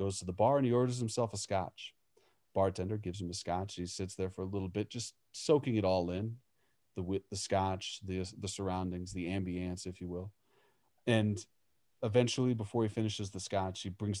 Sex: male